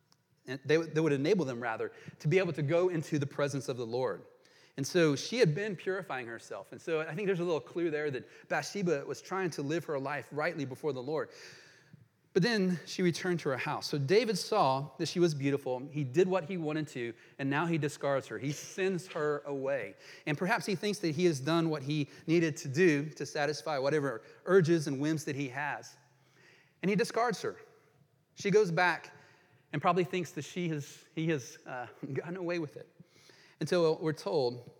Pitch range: 140-180 Hz